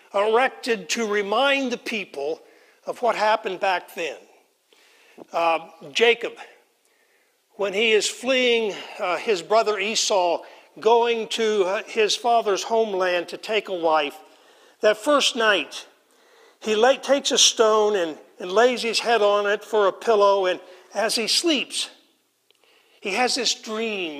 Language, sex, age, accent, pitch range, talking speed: English, male, 60-79, American, 210-275 Hz, 135 wpm